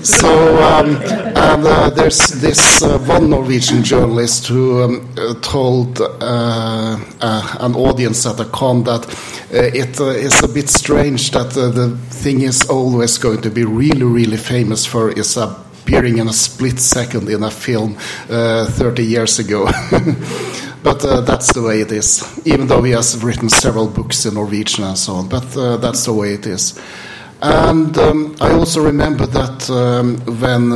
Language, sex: Swedish, male